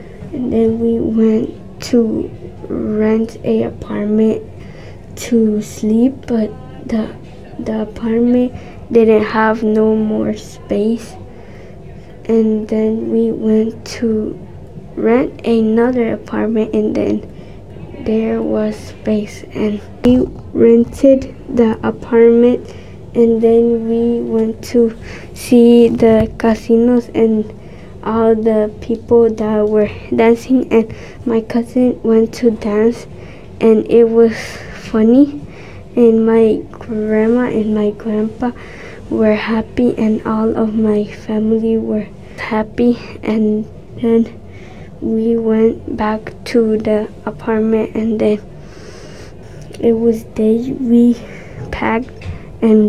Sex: female